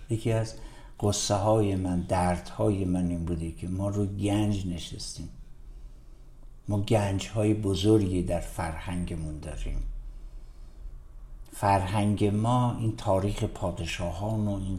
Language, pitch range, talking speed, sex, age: Persian, 90-115 Hz, 120 wpm, male, 60-79